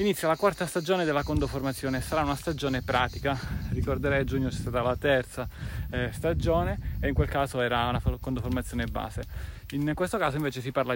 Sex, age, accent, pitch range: male, 30-49, native, 125-150 Hz